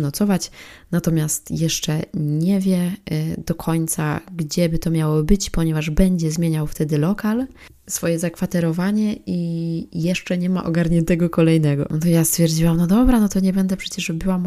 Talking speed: 155 wpm